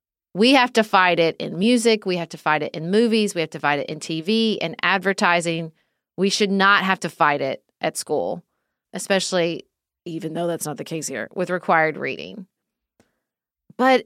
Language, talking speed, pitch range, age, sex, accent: English, 190 wpm, 175-245 Hz, 30-49, female, American